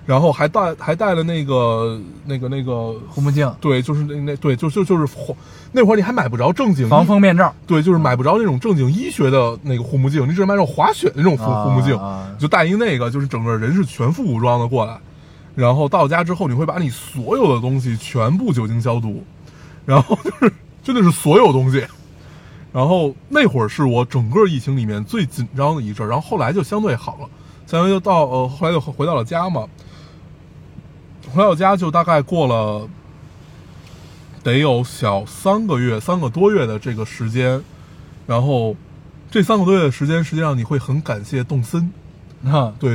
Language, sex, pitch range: Chinese, male, 125-180 Hz